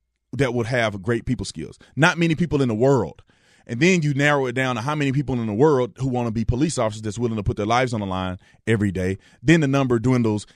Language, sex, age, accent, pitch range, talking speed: English, male, 30-49, American, 120-165 Hz, 260 wpm